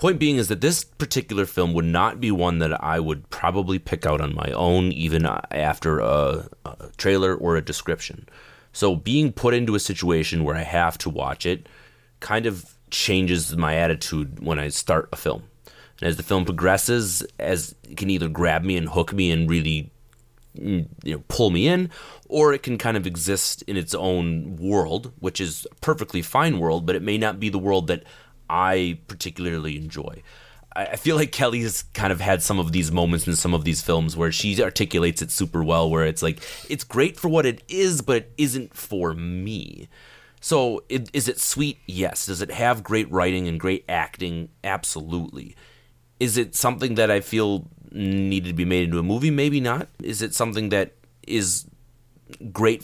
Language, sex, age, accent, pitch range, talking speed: English, male, 30-49, American, 85-115 Hz, 195 wpm